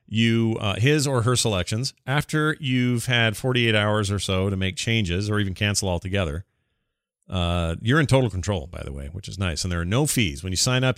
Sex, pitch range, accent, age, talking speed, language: male, 95-125 Hz, American, 40-59, 220 wpm, English